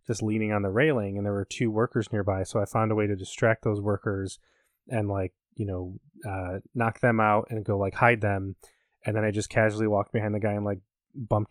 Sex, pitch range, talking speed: male, 105-120 Hz, 235 wpm